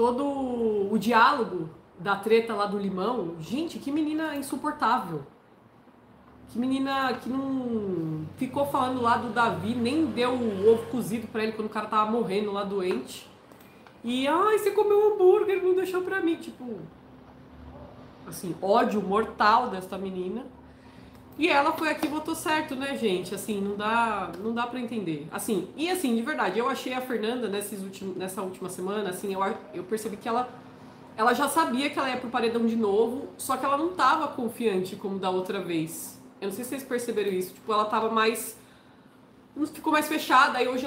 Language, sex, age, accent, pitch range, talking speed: Portuguese, female, 20-39, Brazilian, 205-270 Hz, 180 wpm